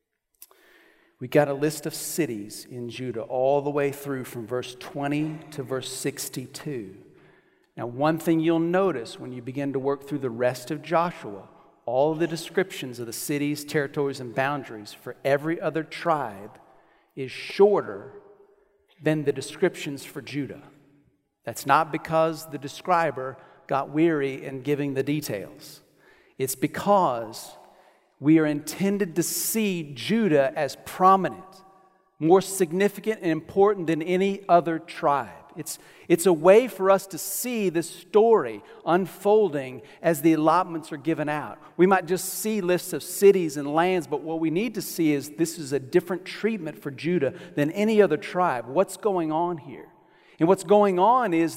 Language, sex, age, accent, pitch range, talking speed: English, male, 40-59, American, 145-190 Hz, 155 wpm